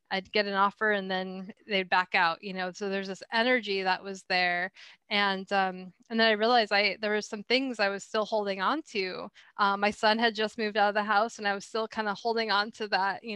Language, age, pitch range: English, 10-29, 195-220 Hz